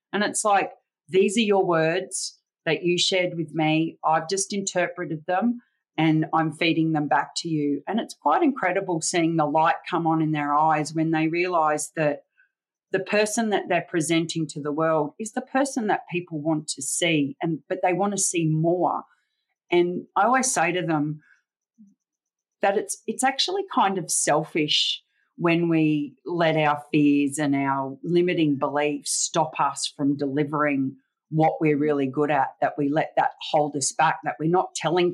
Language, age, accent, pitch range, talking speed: English, 40-59, Australian, 150-185 Hz, 180 wpm